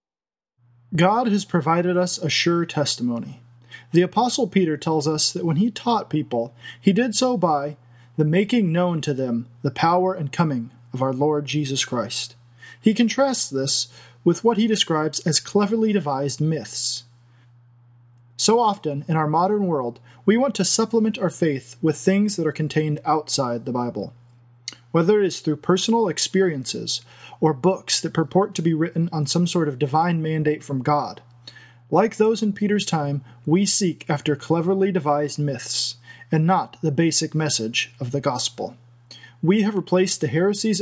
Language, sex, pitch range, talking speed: English, male, 125-185 Hz, 165 wpm